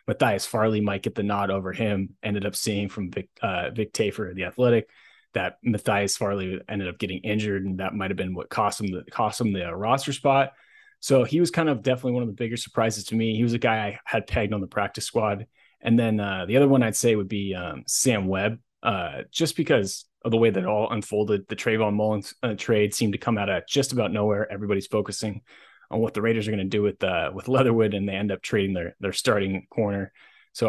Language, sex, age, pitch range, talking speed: English, male, 20-39, 100-120 Hz, 240 wpm